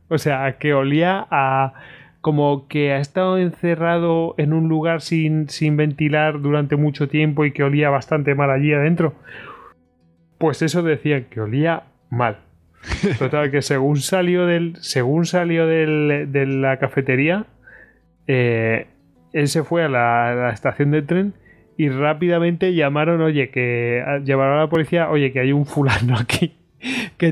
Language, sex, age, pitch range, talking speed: Spanish, male, 20-39, 130-155 Hz, 150 wpm